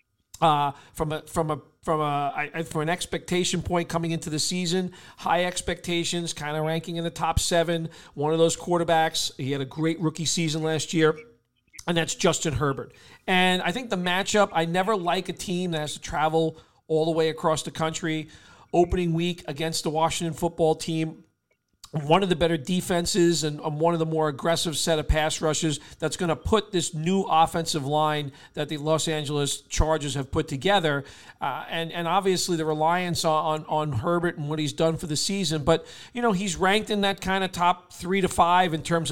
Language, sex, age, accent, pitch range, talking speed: English, male, 40-59, American, 155-175 Hz, 200 wpm